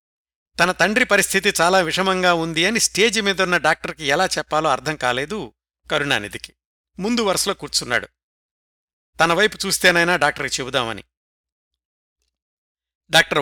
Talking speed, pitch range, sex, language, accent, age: 110 wpm, 125-180 Hz, male, Telugu, native, 60-79